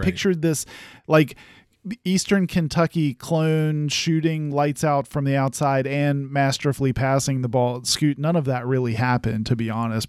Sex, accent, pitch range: male, American, 125-150 Hz